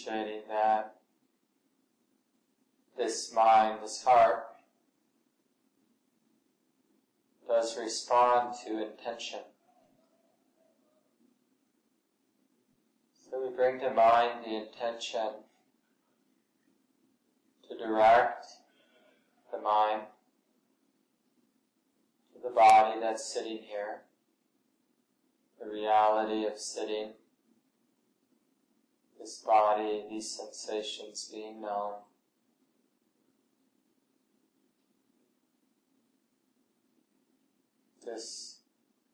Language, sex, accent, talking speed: English, male, American, 55 wpm